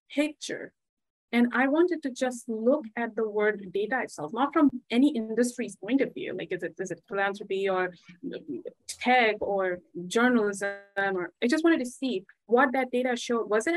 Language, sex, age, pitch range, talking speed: English, female, 20-39, 215-275 Hz, 180 wpm